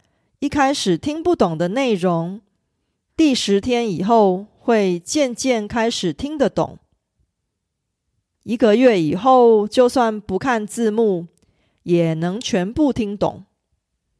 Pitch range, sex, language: 175-255 Hz, female, Korean